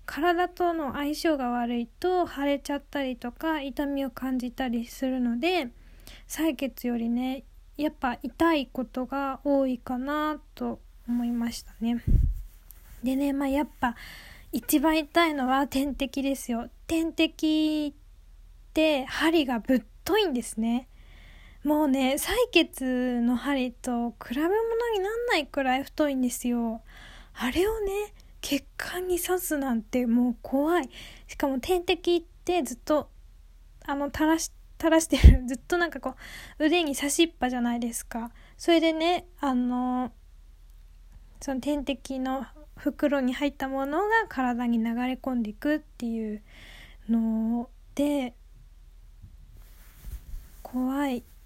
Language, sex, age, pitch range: Japanese, female, 10-29, 245-305 Hz